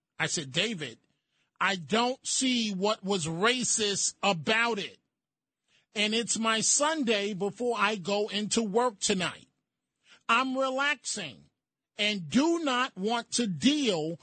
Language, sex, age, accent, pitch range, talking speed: English, male, 40-59, American, 185-245 Hz, 120 wpm